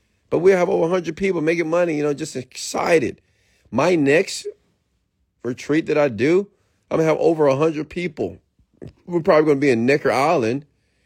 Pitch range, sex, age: 110-160 Hz, male, 30-49